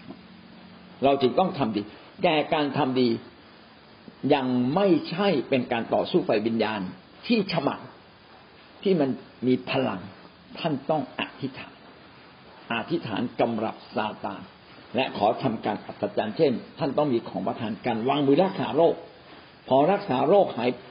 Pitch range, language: 135-205 Hz, Thai